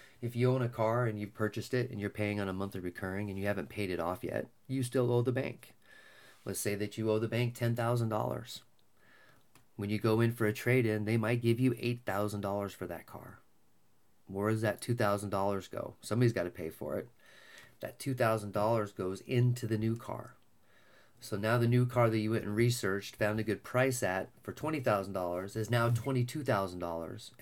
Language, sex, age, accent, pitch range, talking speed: English, male, 30-49, American, 105-125 Hz, 195 wpm